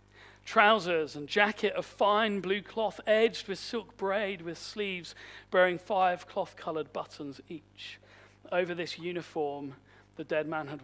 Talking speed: 145 wpm